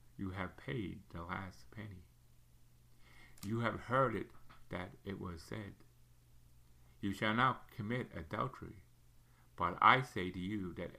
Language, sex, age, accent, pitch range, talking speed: English, male, 60-79, American, 85-120 Hz, 135 wpm